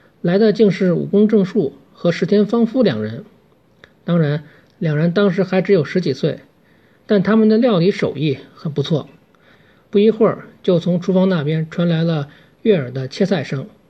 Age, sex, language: 50-69, male, Chinese